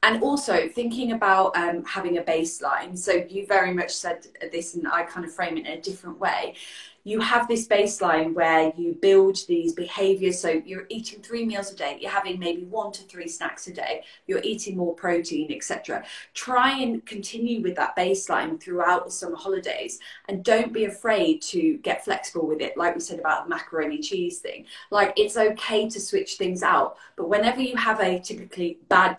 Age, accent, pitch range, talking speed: 20-39, British, 180-245 Hz, 195 wpm